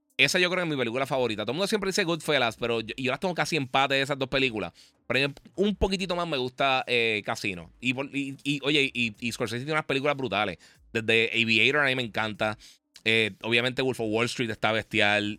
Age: 30-49